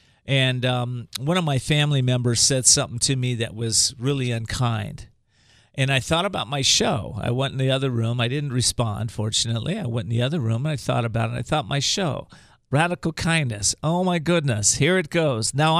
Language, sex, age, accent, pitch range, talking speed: English, male, 50-69, American, 115-140 Hz, 215 wpm